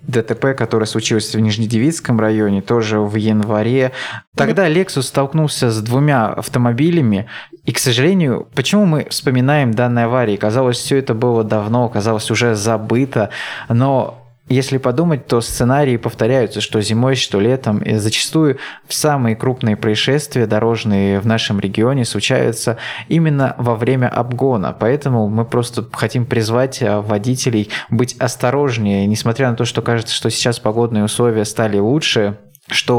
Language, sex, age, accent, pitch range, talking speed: Russian, male, 20-39, native, 110-130 Hz, 135 wpm